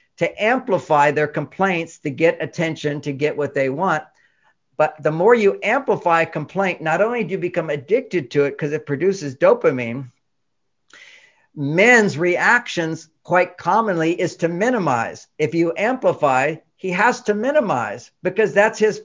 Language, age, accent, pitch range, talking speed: English, 60-79, American, 155-200 Hz, 150 wpm